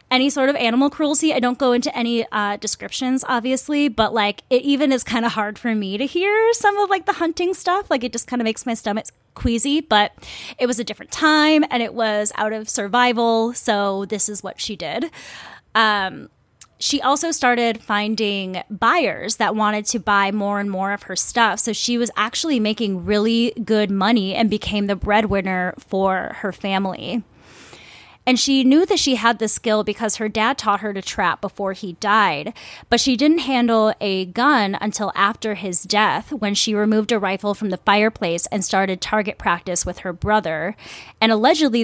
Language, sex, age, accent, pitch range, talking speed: English, female, 20-39, American, 205-245 Hz, 190 wpm